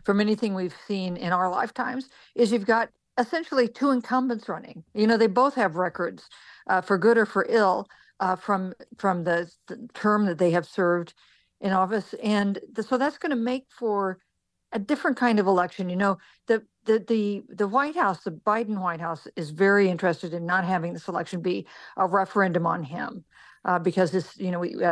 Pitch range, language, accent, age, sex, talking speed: 175-225 Hz, English, American, 50-69, female, 195 wpm